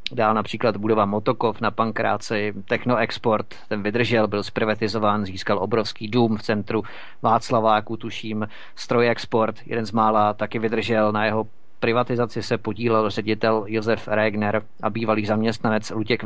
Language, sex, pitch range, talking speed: Czech, male, 105-115 Hz, 135 wpm